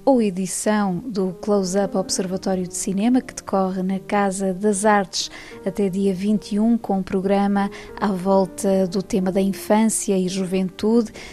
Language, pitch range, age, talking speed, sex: Portuguese, 190-210 Hz, 20-39, 145 wpm, female